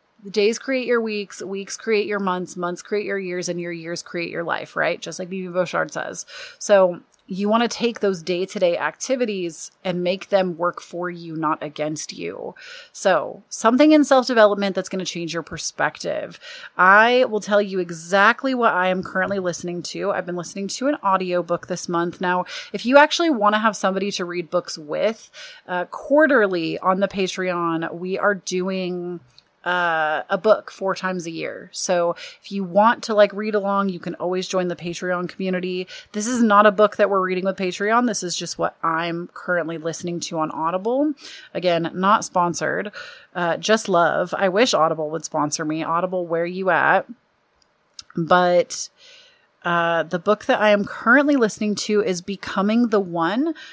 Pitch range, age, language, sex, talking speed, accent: 175-215 Hz, 30-49, English, female, 180 wpm, American